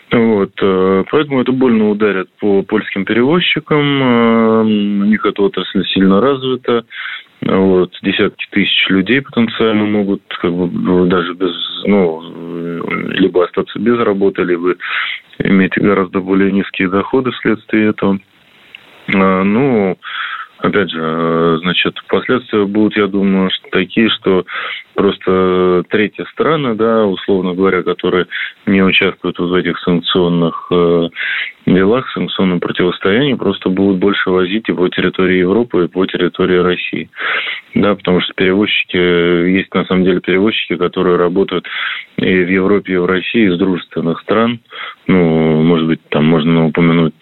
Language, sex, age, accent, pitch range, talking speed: Russian, male, 20-39, native, 90-105 Hz, 125 wpm